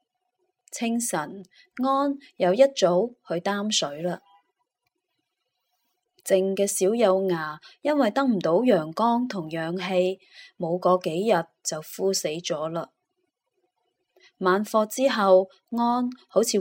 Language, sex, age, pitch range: Chinese, female, 20-39, 180-250 Hz